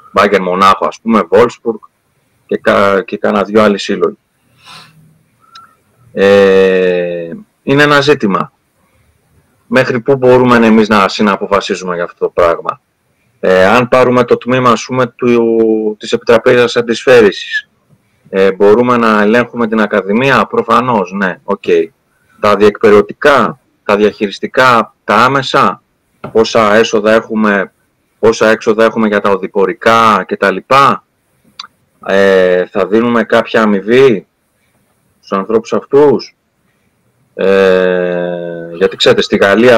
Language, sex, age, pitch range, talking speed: Greek, male, 30-49, 100-140 Hz, 115 wpm